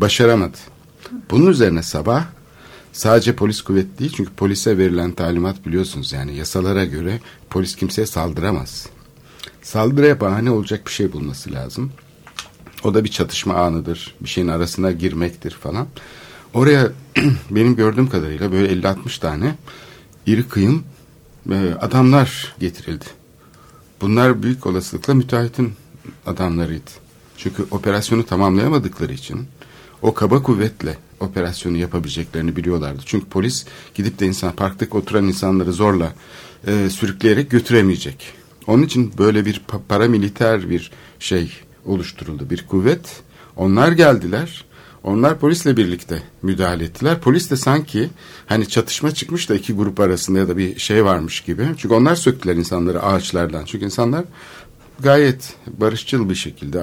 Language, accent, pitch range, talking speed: Turkish, native, 90-125 Hz, 125 wpm